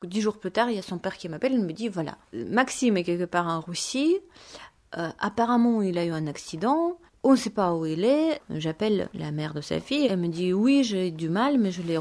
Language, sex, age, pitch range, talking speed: French, female, 30-49, 170-245 Hz, 255 wpm